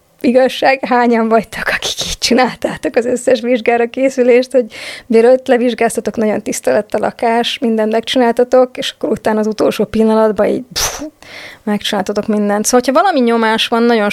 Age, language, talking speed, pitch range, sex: 20-39, Hungarian, 150 wpm, 210-245 Hz, female